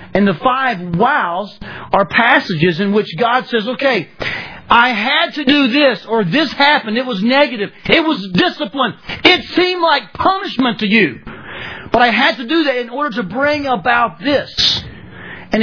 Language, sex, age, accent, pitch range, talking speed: English, male, 40-59, American, 195-270 Hz, 170 wpm